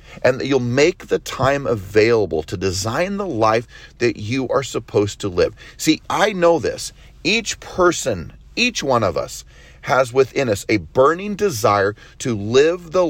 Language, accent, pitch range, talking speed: English, American, 95-145 Hz, 165 wpm